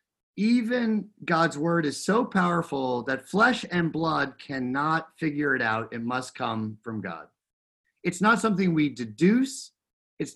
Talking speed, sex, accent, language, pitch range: 145 wpm, male, American, English, 125-170 Hz